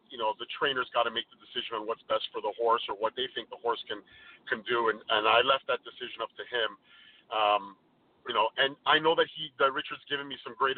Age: 40-59